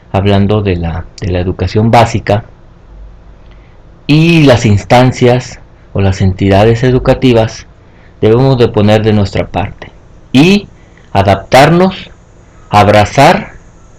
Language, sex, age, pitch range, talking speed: Spanish, male, 50-69, 95-120 Hz, 105 wpm